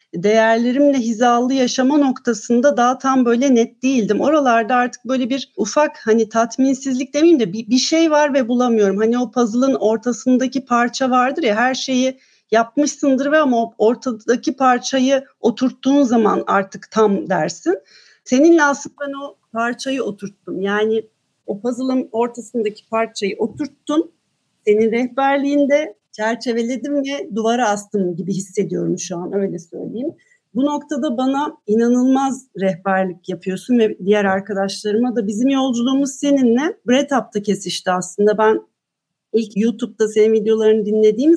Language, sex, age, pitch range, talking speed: Turkish, female, 40-59, 210-265 Hz, 130 wpm